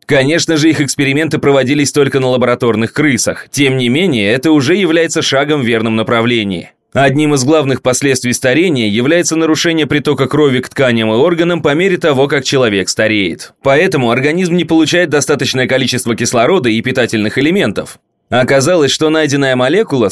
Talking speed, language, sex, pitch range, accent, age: 155 wpm, Russian, male, 125-160 Hz, native, 20-39